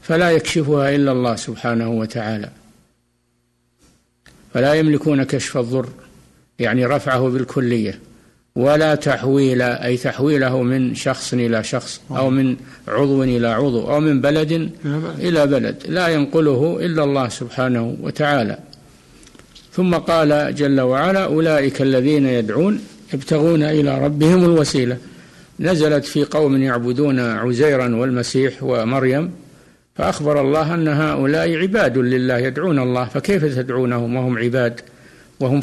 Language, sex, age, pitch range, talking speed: Arabic, male, 60-79, 125-150 Hz, 115 wpm